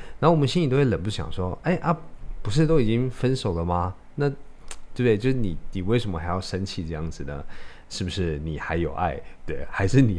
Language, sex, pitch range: Chinese, male, 85-125 Hz